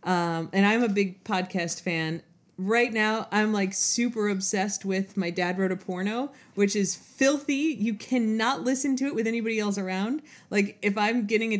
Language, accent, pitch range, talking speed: English, American, 175-205 Hz, 185 wpm